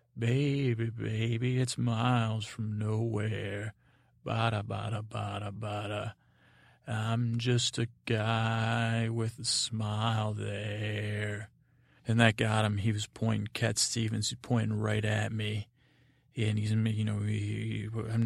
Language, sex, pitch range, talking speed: English, male, 110-120 Hz, 120 wpm